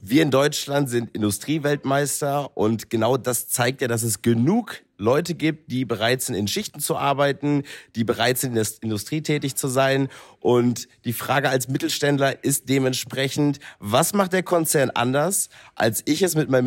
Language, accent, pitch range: German, German, 120-150 Hz